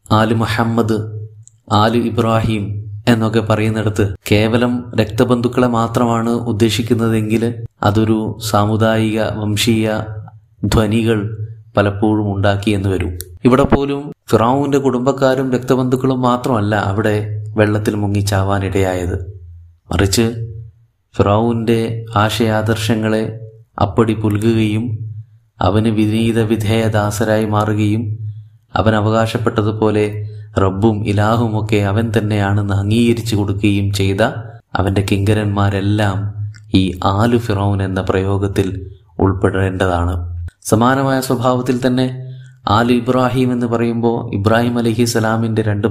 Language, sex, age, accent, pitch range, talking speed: Malayalam, male, 30-49, native, 105-115 Hz, 85 wpm